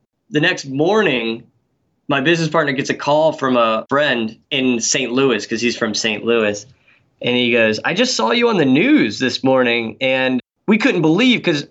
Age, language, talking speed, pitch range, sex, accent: 20-39, English, 190 wpm, 120-150 Hz, male, American